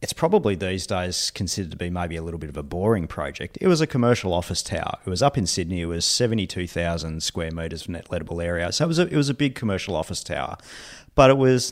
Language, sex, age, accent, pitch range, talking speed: English, male, 40-59, Australian, 85-100 Hz, 240 wpm